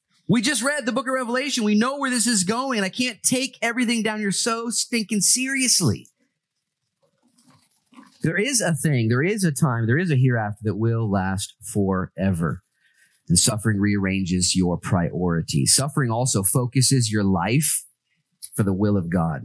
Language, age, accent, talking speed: English, 30-49, American, 165 wpm